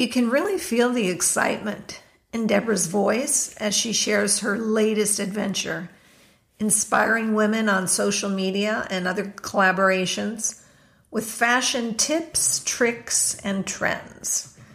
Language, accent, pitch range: English, American, 200-230 Hz